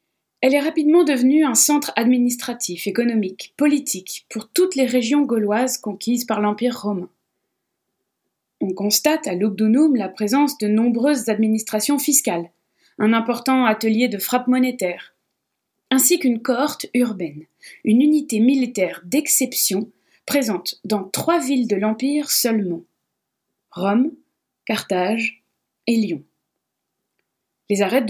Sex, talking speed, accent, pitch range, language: female, 115 wpm, French, 210-260 Hz, French